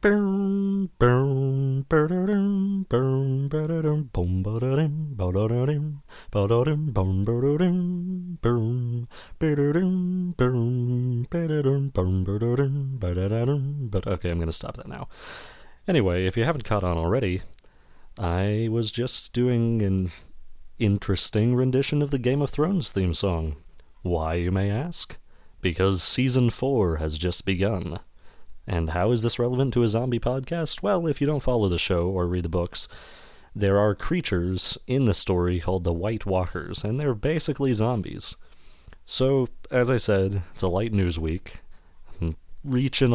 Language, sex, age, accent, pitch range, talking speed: English, male, 30-49, American, 90-135 Hz, 115 wpm